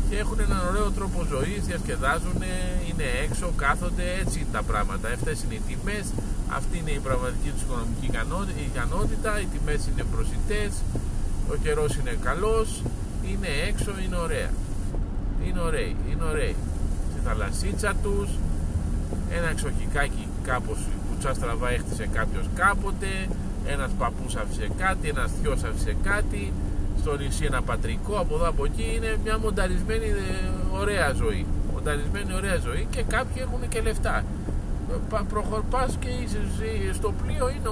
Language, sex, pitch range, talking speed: Greek, male, 75-100 Hz, 140 wpm